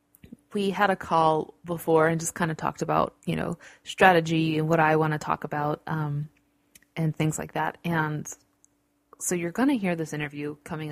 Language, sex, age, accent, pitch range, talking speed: English, female, 20-39, American, 150-175 Hz, 190 wpm